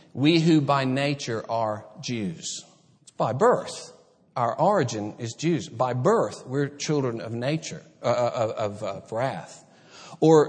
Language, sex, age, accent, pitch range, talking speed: English, male, 50-69, American, 115-170 Hz, 135 wpm